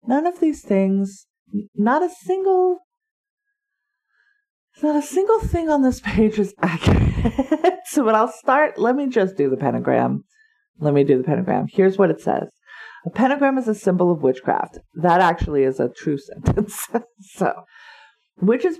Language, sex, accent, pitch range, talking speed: English, female, American, 170-280 Hz, 160 wpm